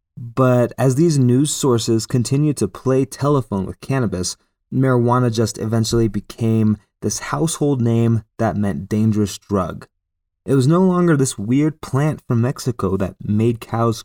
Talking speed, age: 145 wpm, 20-39